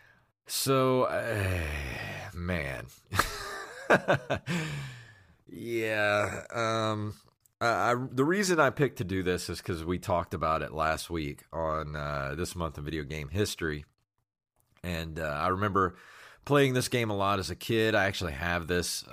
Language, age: English, 30-49